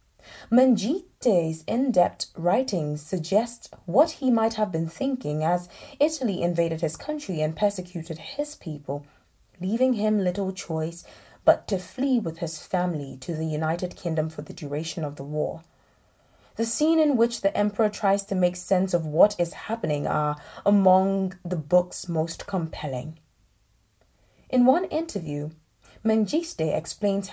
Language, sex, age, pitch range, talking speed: English, female, 20-39, 160-215 Hz, 140 wpm